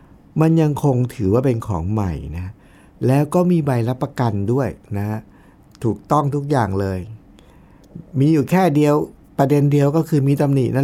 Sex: male